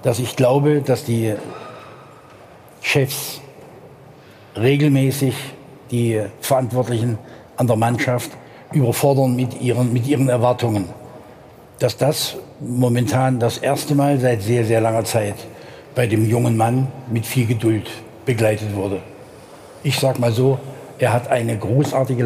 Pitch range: 115-135 Hz